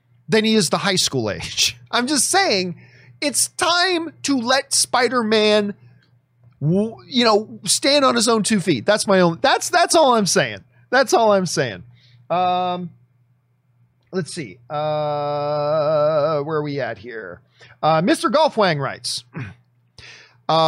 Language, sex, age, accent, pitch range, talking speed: English, male, 40-59, American, 125-205 Hz, 145 wpm